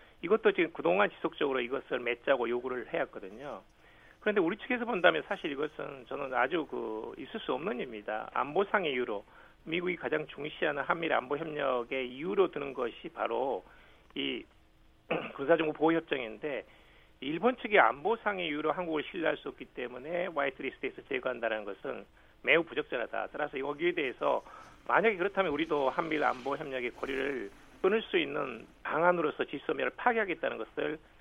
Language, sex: Korean, male